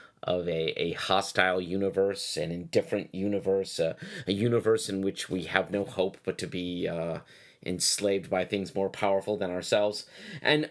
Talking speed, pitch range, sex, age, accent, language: 165 wpm, 90-110 Hz, male, 30-49, American, English